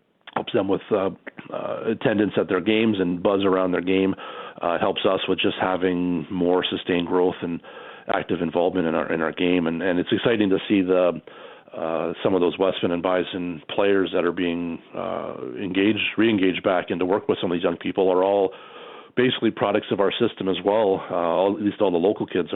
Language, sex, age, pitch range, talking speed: English, male, 40-59, 85-95 Hz, 210 wpm